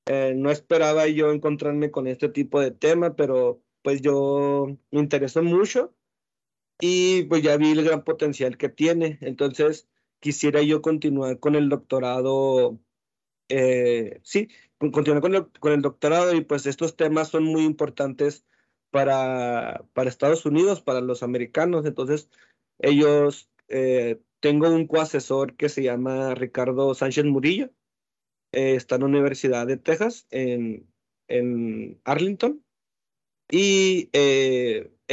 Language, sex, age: Spanish, male, 30-49